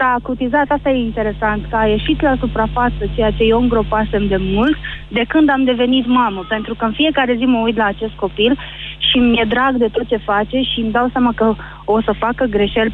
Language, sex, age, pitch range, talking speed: Romanian, female, 20-39, 215-255 Hz, 225 wpm